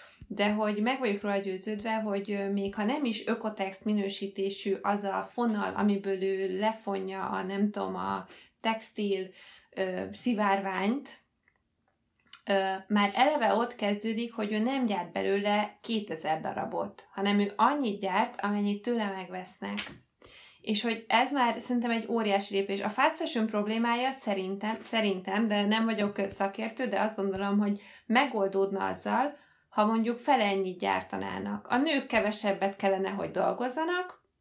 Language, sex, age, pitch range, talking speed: Hungarian, female, 20-39, 195-240 Hz, 140 wpm